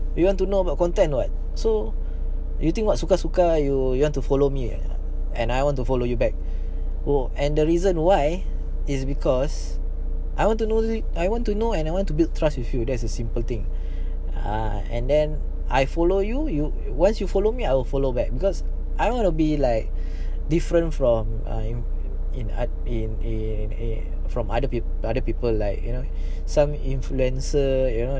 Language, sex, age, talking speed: English, male, 20-39, 200 wpm